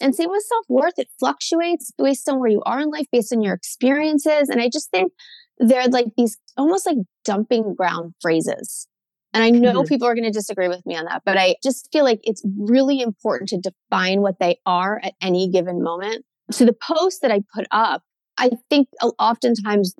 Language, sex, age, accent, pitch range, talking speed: English, female, 20-39, American, 200-280 Hz, 205 wpm